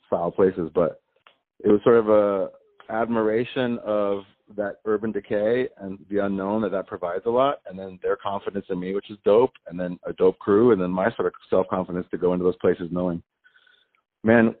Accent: American